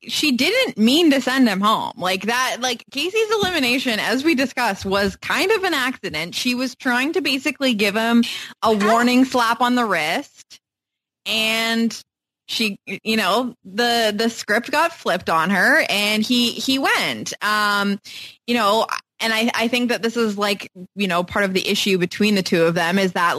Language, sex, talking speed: English, female, 185 wpm